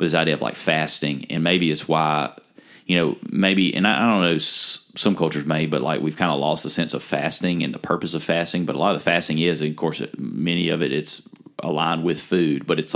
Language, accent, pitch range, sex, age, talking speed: English, American, 75-85 Hz, male, 30-49, 245 wpm